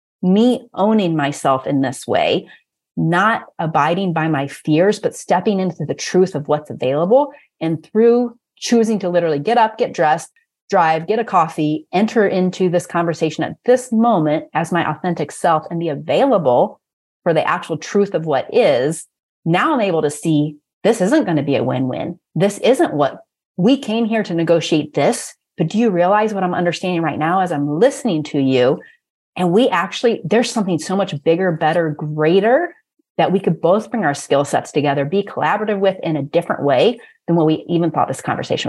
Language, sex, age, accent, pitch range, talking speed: English, female, 30-49, American, 150-210 Hz, 190 wpm